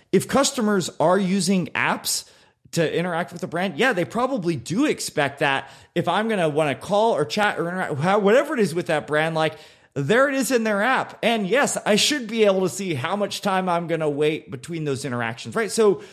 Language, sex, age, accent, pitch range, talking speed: English, male, 30-49, American, 140-195 Hz, 225 wpm